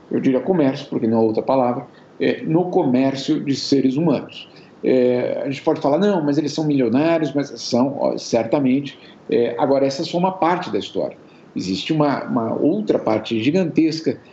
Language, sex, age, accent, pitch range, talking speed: Portuguese, male, 50-69, Brazilian, 140-200 Hz, 175 wpm